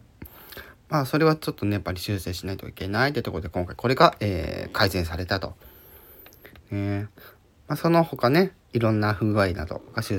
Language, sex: Japanese, male